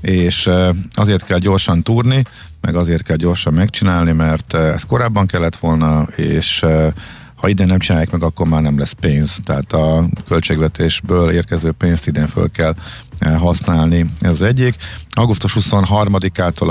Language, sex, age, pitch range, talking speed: Hungarian, male, 50-69, 80-100 Hz, 145 wpm